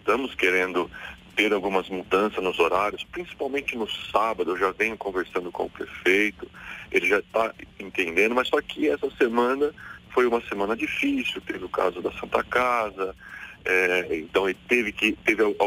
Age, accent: 40-59, Brazilian